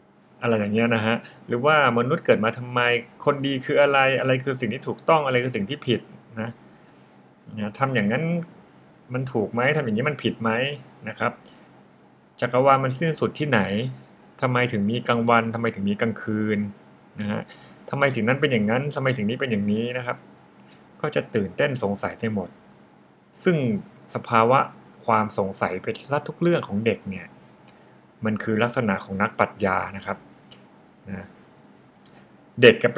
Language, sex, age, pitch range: Thai, male, 60-79, 100-125 Hz